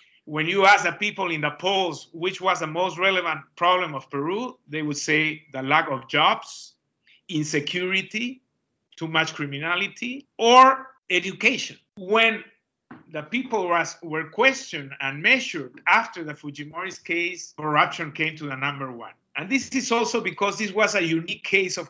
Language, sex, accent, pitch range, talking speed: English, male, Mexican, 150-200 Hz, 155 wpm